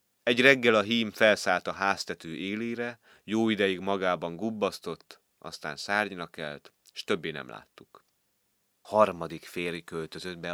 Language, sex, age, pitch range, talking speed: Hungarian, male, 30-49, 75-100 Hz, 130 wpm